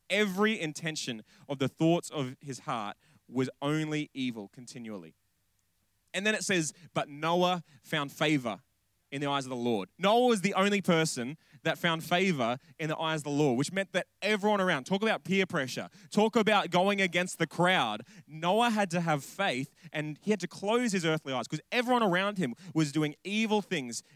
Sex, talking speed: male, 190 wpm